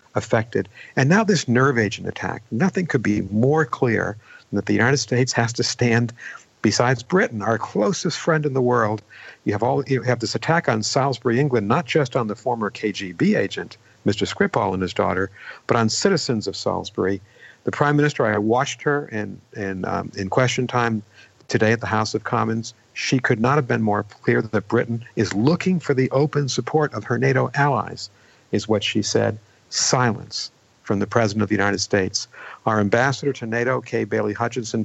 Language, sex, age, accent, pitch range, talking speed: English, male, 50-69, American, 110-135 Hz, 190 wpm